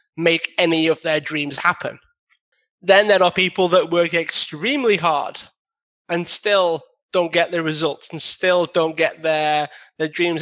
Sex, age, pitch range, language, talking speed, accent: male, 20-39, 155-190 Hz, English, 155 wpm, British